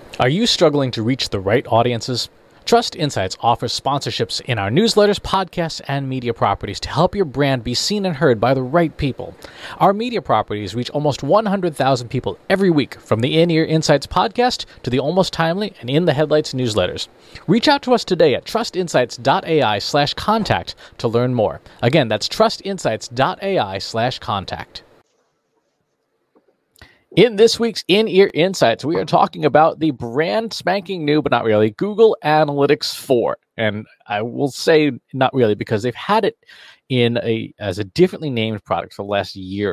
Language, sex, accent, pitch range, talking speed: English, male, American, 110-170 Hz, 170 wpm